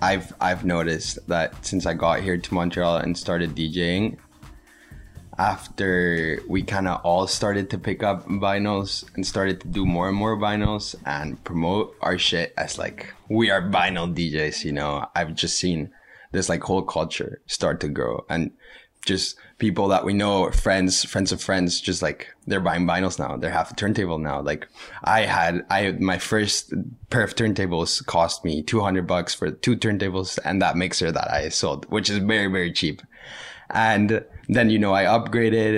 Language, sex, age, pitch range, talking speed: English, male, 20-39, 85-100 Hz, 180 wpm